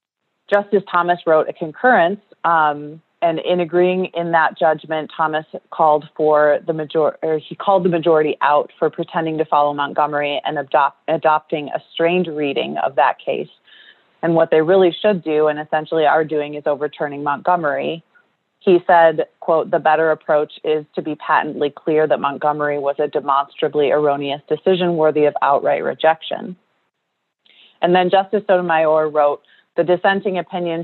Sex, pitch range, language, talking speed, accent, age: female, 150-175 Hz, English, 155 wpm, American, 30-49